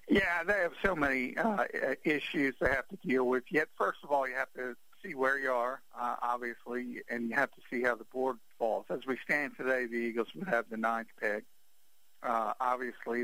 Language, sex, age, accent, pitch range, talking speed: English, male, 50-69, American, 115-135 Hz, 210 wpm